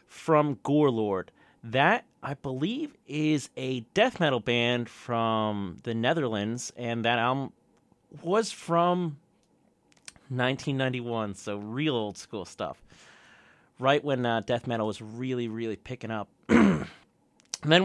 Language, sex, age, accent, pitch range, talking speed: English, male, 30-49, American, 120-165 Hz, 120 wpm